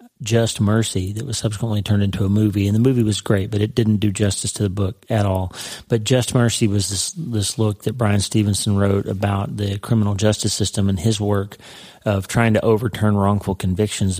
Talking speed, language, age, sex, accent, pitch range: 205 wpm, English, 30-49, male, American, 100-115 Hz